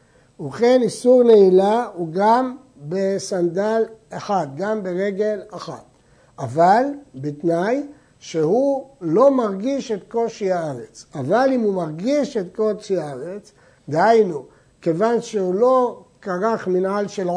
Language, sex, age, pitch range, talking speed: Hebrew, male, 60-79, 165-215 Hz, 110 wpm